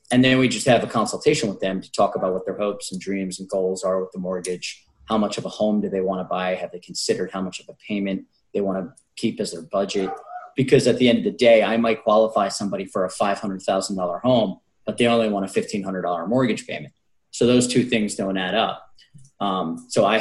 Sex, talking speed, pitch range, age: male, 240 wpm, 95-110 Hz, 30-49